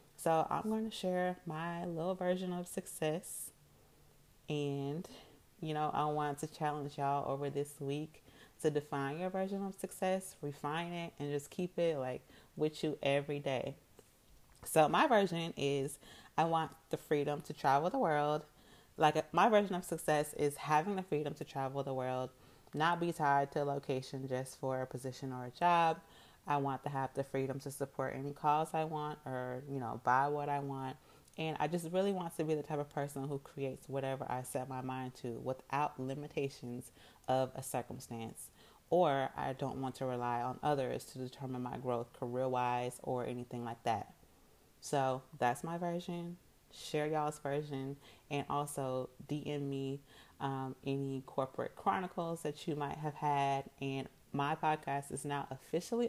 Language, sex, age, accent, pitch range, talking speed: English, female, 30-49, American, 135-165 Hz, 175 wpm